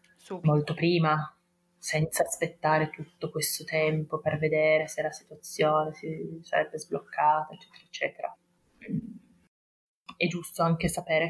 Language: Italian